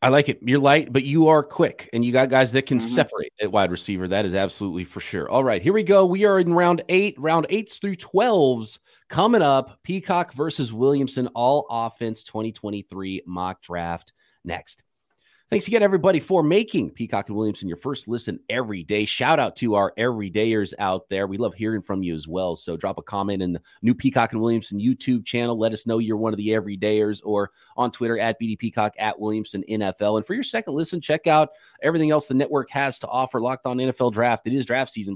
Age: 30-49